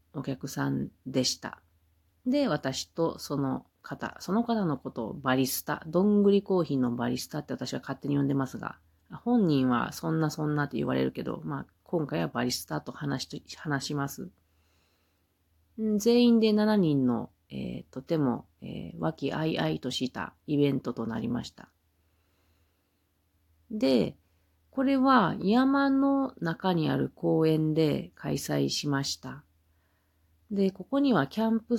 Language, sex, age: Japanese, female, 40-59